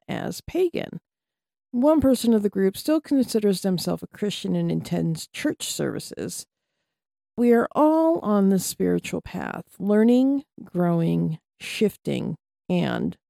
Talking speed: 120 wpm